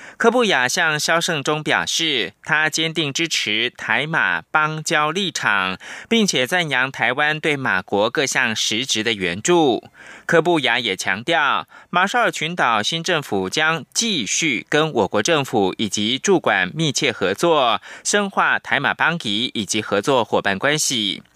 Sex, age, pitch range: male, 20-39, 125-180 Hz